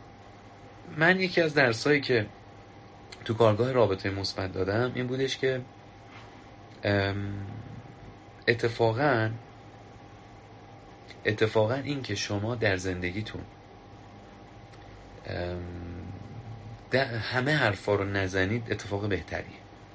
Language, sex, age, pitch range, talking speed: Persian, male, 30-49, 100-115 Hz, 85 wpm